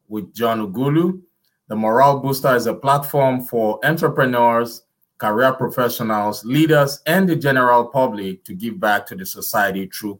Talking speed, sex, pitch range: 145 wpm, male, 120-155 Hz